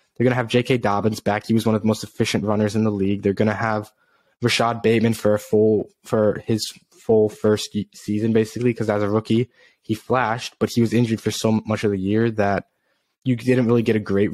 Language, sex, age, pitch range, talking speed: English, male, 10-29, 105-120 Hz, 225 wpm